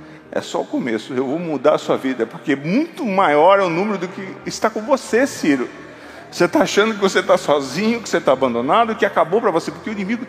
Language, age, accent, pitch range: Portuguese, 40-59, Brazilian, 140-195 Hz